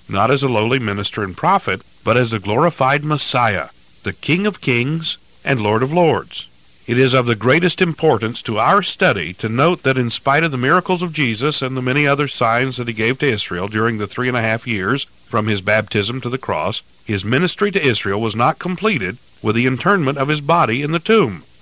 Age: 50-69